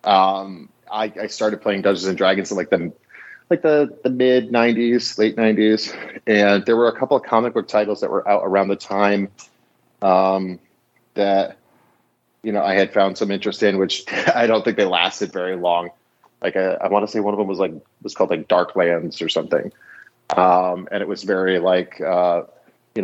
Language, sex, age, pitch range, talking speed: English, male, 30-49, 95-110 Hz, 200 wpm